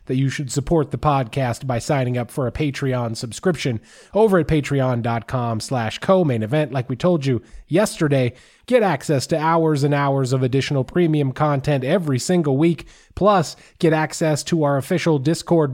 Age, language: 20-39, English